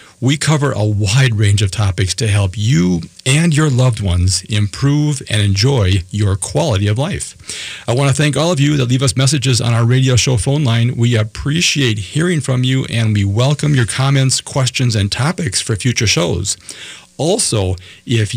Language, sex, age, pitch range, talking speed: English, male, 50-69, 105-135 Hz, 180 wpm